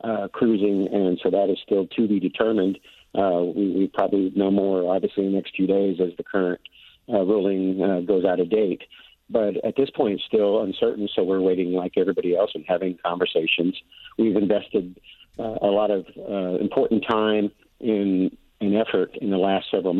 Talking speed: 195 wpm